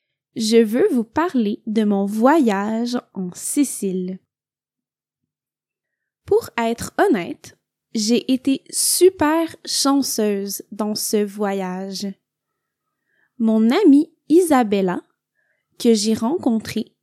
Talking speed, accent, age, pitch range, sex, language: 90 wpm, Canadian, 20-39, 215-290 Hz, female, French